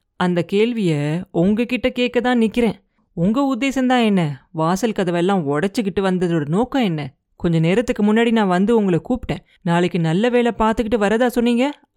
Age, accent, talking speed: 30-49, native, 140 wpm